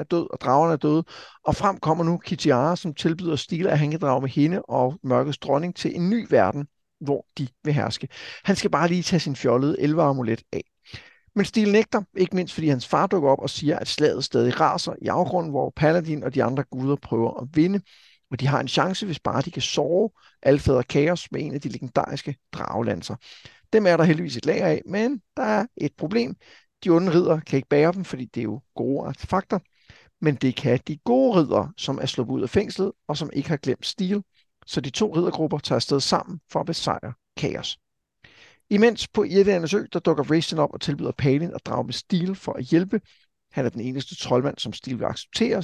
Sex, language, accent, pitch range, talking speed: male, Danish, native, 135-180 Hz, 215 wpm